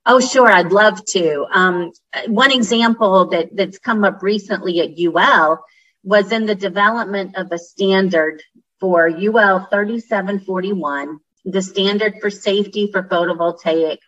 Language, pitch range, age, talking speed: English, 170-220 Hz, 40-59, 130 wpm